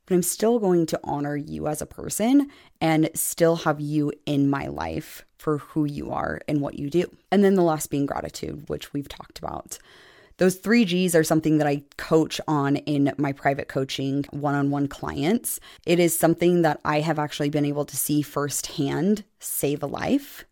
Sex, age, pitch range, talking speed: female, 20-39, 145-175 Hz, 190 wpm